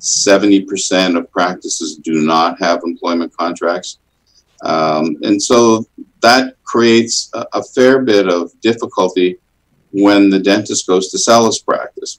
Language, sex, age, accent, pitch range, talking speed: English, male, 50-69, American, 80-115 Hz, 130 wpm